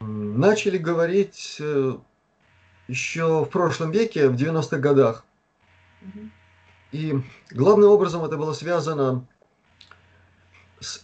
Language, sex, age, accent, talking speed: Russian, male, 30-49, native, 85 wpm